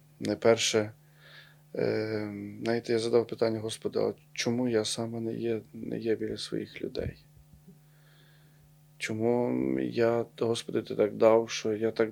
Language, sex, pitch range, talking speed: Ukrainian, male, 110-150 Hz, 130 wpm